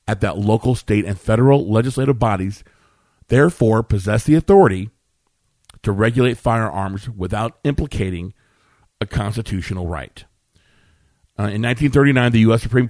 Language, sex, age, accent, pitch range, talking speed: English, male, 50-69, American, 100-125 Hz, 120 wpm